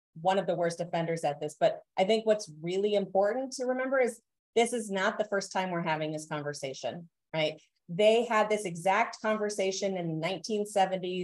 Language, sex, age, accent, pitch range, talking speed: English, female, 30-49, American, 170-215 Hz, 180 wpm